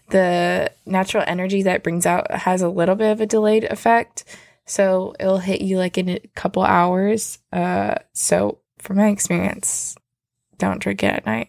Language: English